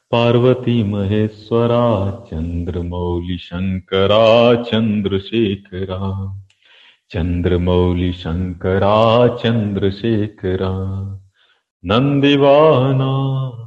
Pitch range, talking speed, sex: 95-140 Hz, 50 wpm, male